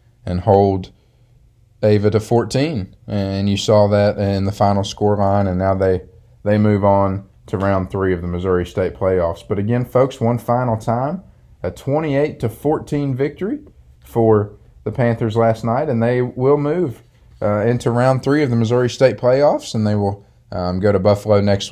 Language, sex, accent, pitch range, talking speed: English, male, American, 100-115 Hz, 180 wpm